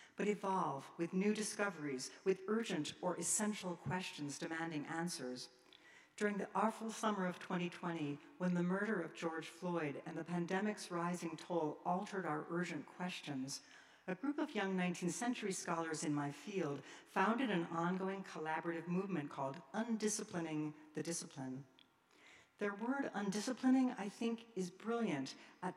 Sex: female